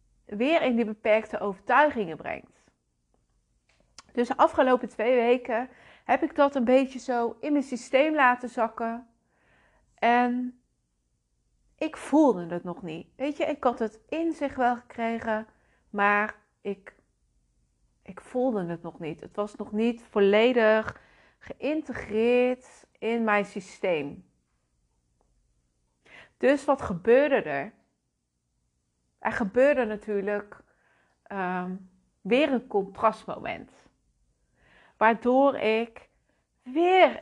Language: Dutch